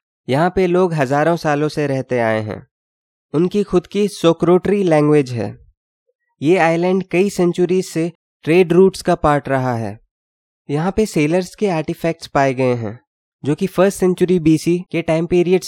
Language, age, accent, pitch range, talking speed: Hindi, 20-39, native, 130-170 Hz, 160 wpm